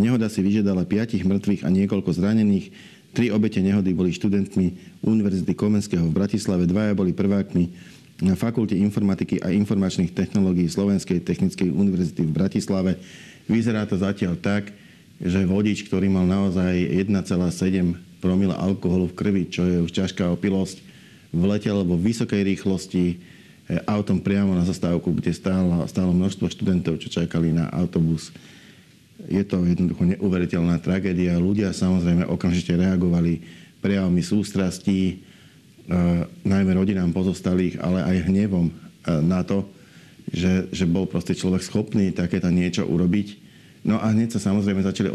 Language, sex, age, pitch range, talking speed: Slovak, male, 50-69, 90-100 Hz, 135 wpm